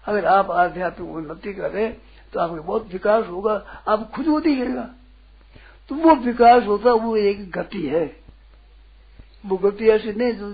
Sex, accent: male, native